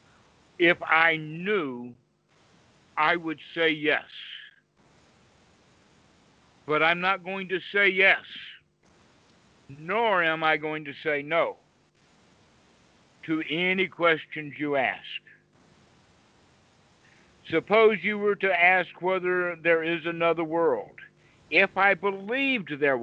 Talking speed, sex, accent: 105 wpm, male, American